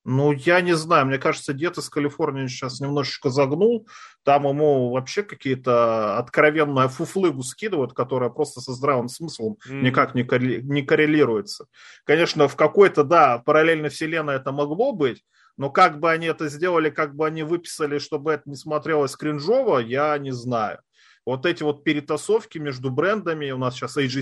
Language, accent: Russian, native